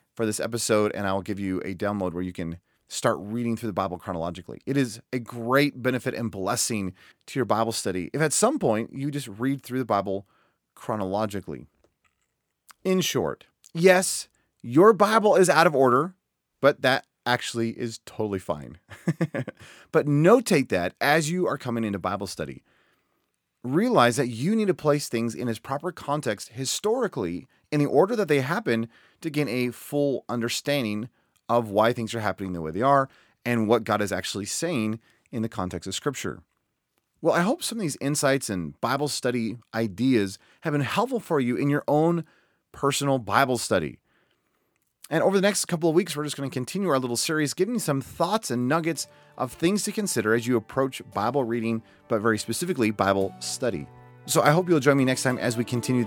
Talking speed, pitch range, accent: 190 wpm, 105-145 Hz, American